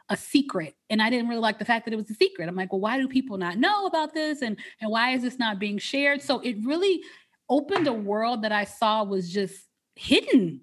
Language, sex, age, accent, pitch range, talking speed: English, female, 20-39, American, 200-270 Hz, 250 wpm